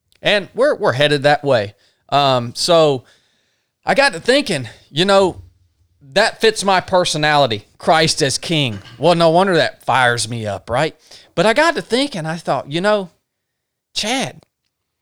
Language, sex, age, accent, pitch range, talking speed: English, male, 30-49, American, 115-155 Hz, 155 wpm